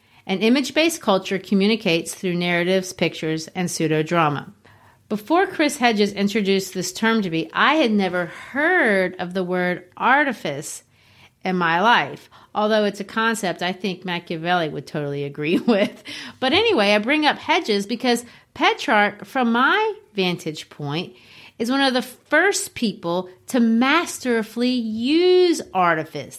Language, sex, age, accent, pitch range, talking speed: English, female, 40-59, American, 180-255 Hz, 140 wpm